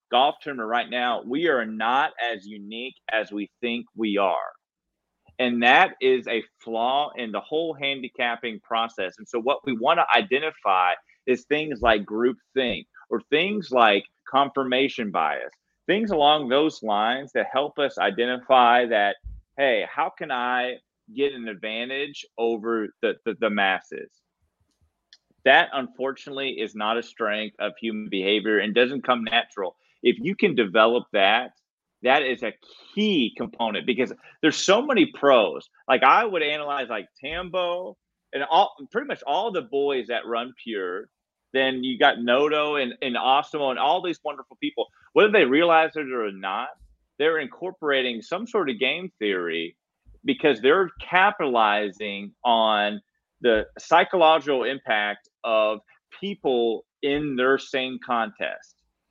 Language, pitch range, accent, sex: English, 115-155 Hz, American, male